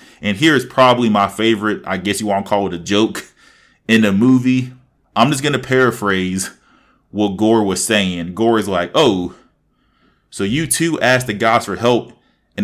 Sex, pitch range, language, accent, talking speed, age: male, 95-120 Hz, English, American, 190 wpm, 20-39